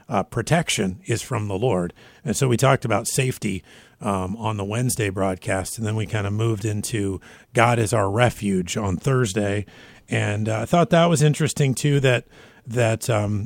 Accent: American